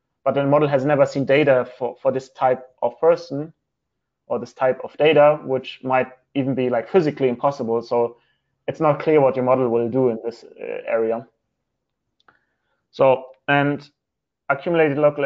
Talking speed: 160 wpm